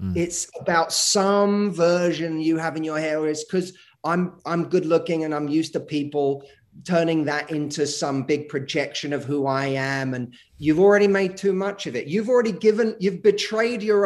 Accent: British